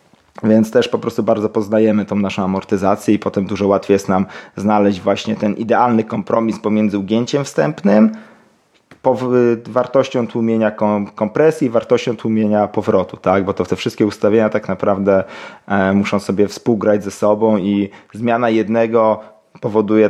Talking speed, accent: 150 wpm, native